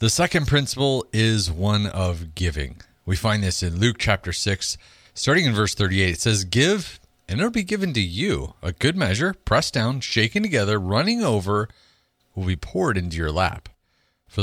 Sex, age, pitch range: male, 40-59, 85-115 Hz